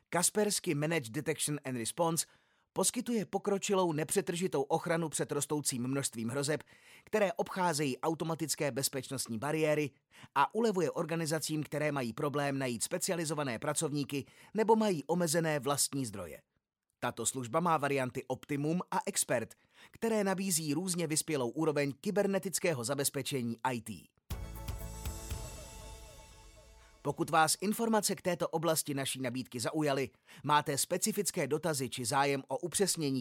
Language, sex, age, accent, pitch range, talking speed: Czech, male, 30-49, native, 140-175 Hz, 115 wpm